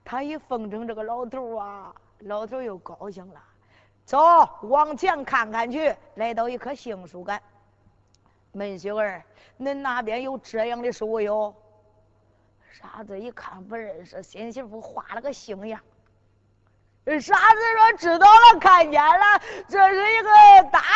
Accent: native